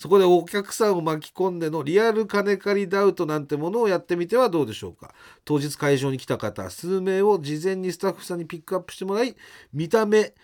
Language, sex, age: Japanese, male, 40-59